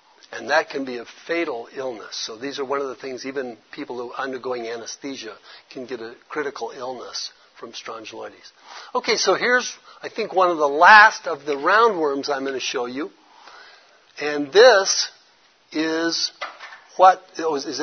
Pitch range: 130-165 Hz